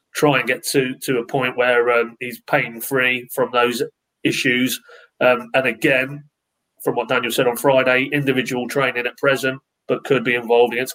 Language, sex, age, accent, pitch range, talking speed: English, male, 30-49, British, 125-145 Hz, 175 wpm